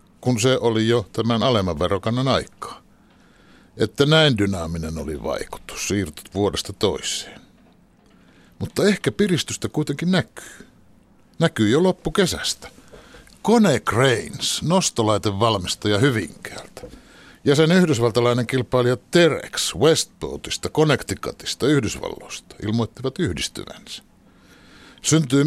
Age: 60-79